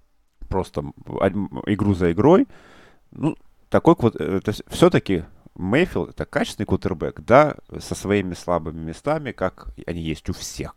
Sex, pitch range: male, 85-120 Hz